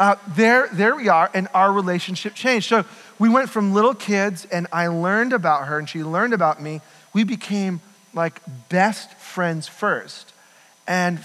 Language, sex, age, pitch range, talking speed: English, male, 40-59, 150-190 Hz, 170 wpm